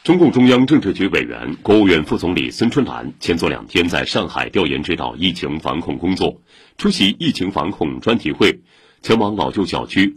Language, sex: Chinese, male